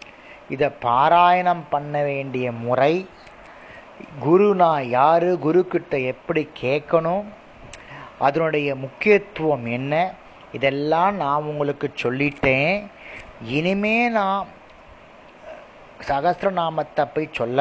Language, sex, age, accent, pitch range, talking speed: Tamil, male, 30-49, native, 140-185 Hz, 80 wpm